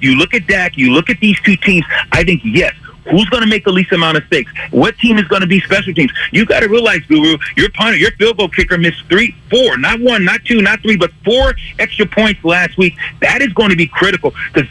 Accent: American